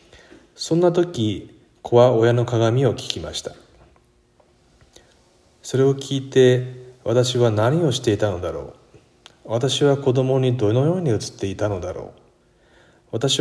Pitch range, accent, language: 110-140 Hz, native, Japanese